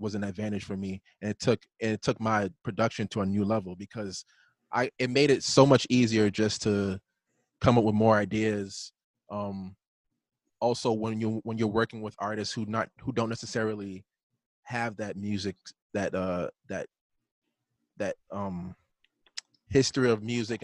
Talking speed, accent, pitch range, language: 165 wpm, American, 100-120 Hz, English